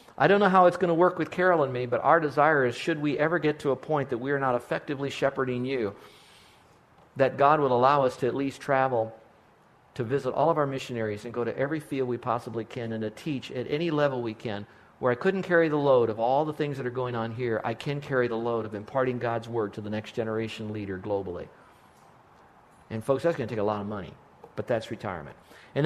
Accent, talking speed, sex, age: American, 245 wpm, male, 50-69